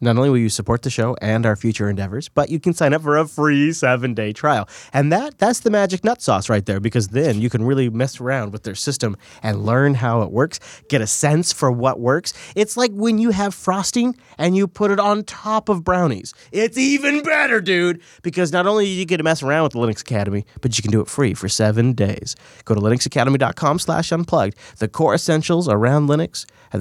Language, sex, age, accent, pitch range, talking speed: English, male, 30-49, American, 115-170 Hz, 225 wpm